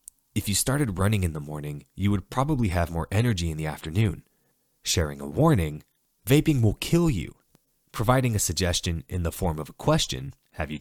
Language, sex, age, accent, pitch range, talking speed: English, male, 20-39, American, 80-125 Hz, 190 wpm